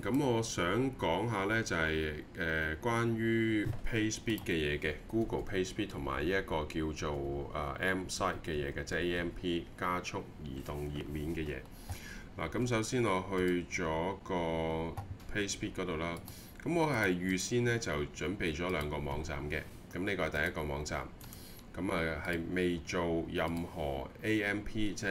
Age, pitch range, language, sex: 20-39, 75-95 Hz, Chinese, male